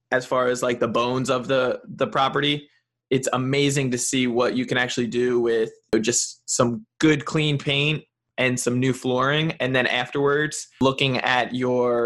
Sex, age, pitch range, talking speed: male, 20-39, 125-140 Hz, 175 wpm